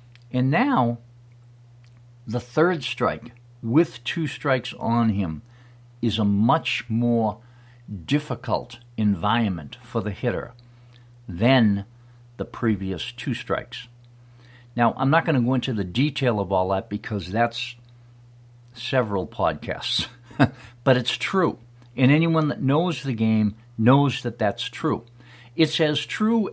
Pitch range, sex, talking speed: 105-125 Hz, male, 125 wpm